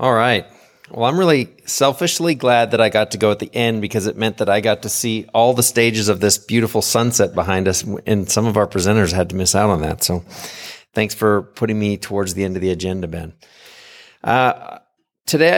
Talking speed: 220 wpm